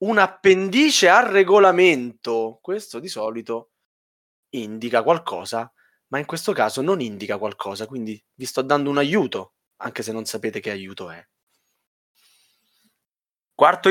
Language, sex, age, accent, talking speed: Italian, male, 20-39, native, 130 wpm